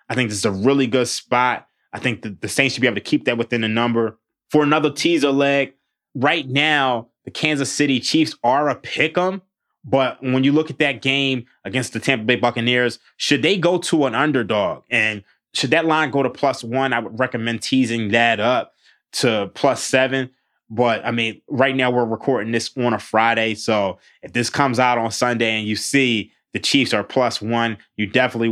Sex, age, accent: male, 20-39, American